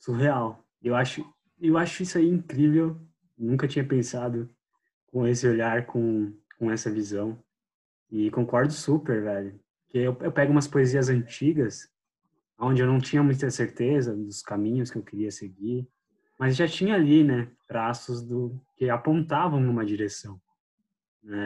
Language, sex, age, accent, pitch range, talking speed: Portuguese, male, 20-39, Brazilian, 115-155 Hz, 150 wpm